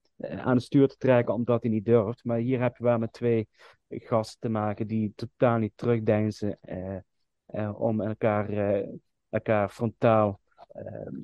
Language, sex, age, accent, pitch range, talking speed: Dutch, male, 30-49, Dutch, 105-125 Hz, 155 wpm